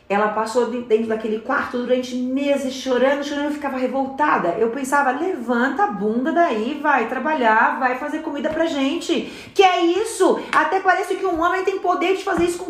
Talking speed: 185 wpm